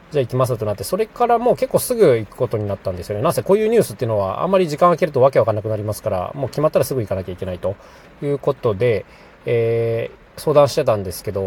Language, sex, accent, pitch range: Japanese, male, native, 105-155 Hz